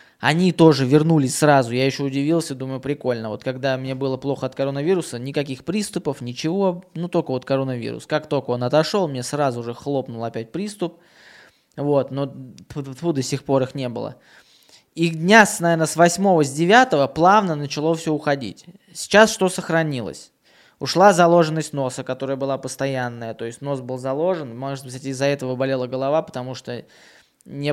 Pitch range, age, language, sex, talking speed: 130-165 Hz, 20-39, Russian, male, 160 wpm